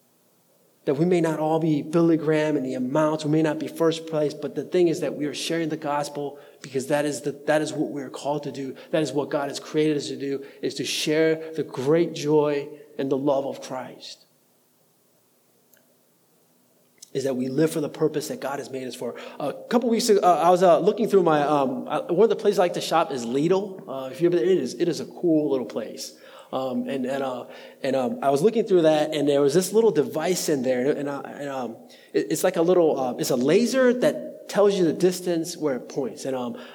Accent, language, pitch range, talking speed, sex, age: American, English, 145-180 Hz, 240 wpm, male, 20-39